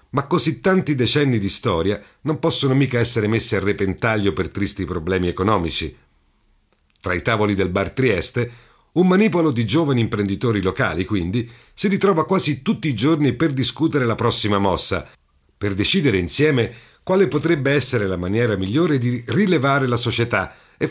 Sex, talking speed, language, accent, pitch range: male, 160 wpm, Italian, native, 100-150 Hz